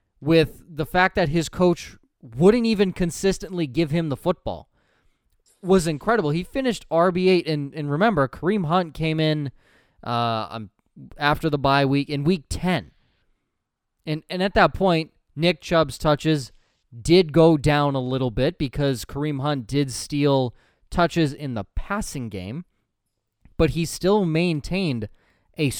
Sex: male